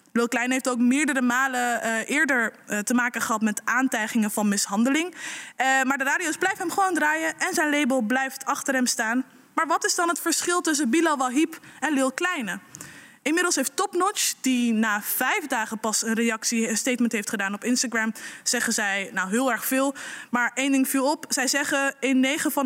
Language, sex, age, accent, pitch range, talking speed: Dutch, female, 20-39, Dutch, 240-320 Hz, 200 wpm